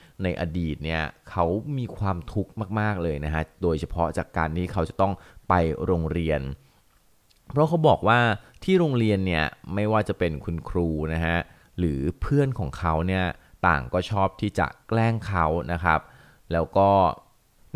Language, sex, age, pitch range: Thai, male, 20-39, 85-105 Hz